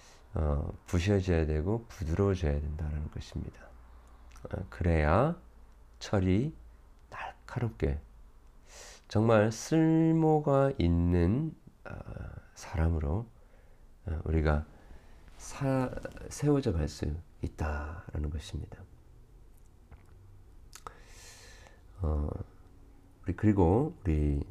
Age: 50-69